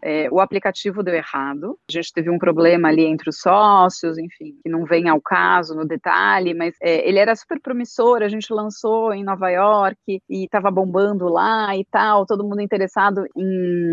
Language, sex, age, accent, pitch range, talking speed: Portuguese, female, 30-49, Brazilian, 165-205 Hz, 190 wpm